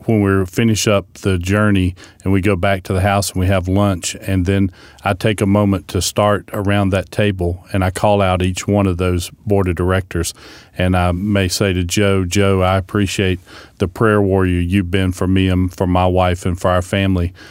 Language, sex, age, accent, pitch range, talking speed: English, male, 40-59, American, 90-105 Hz, 215 wpm